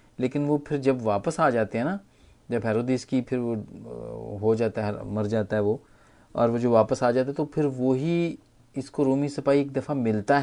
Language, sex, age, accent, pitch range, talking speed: Hindi, male, 40-59, native, 110-145 Hz, 215 wpm